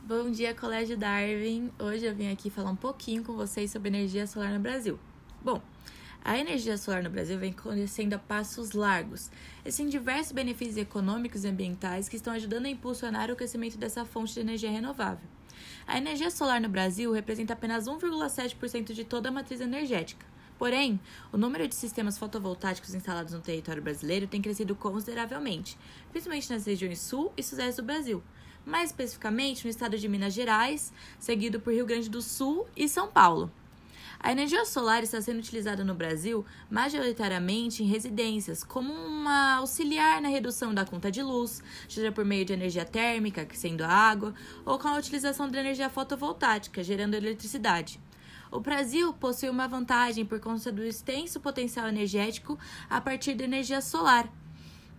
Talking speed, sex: 165 wpm, female